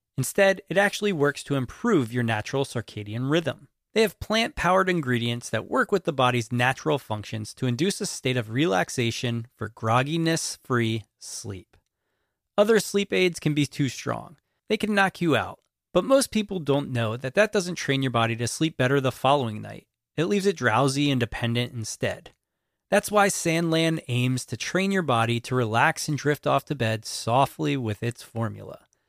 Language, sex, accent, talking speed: English, male, American, 175 wpm